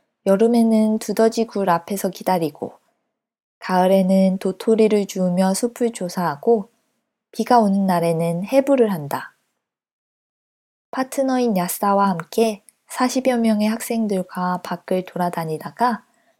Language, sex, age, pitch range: Korean, female, 20-39, 180-225 Hz